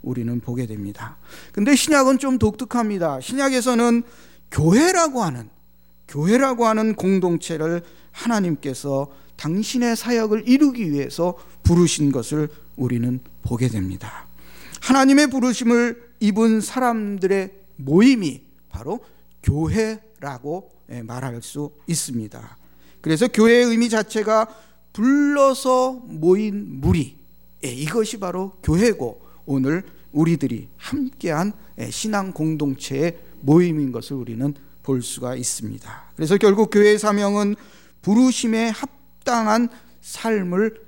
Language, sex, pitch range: Korean, male, 140-230 Hz